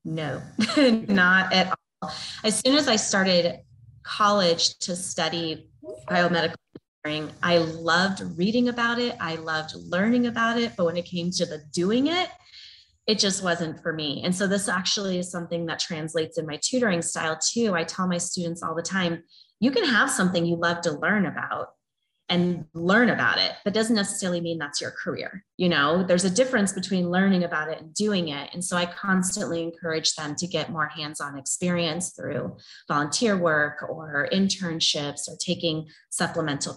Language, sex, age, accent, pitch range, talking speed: English, female, 20-39, American, 160-200 Hz, 175 wpm